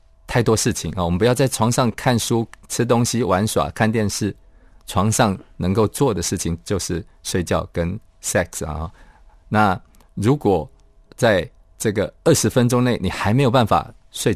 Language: Chinese